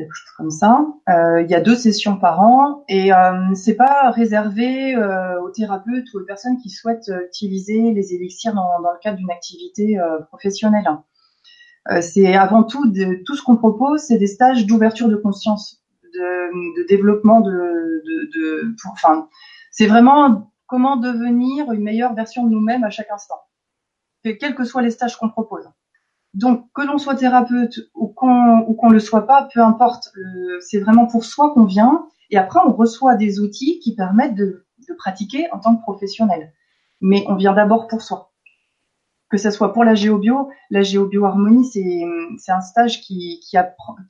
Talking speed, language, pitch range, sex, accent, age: 185 wpm, French, 190-245 Hz, female, French, 30-49